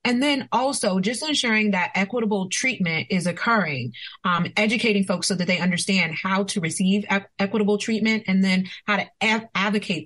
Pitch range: 165-210 Hz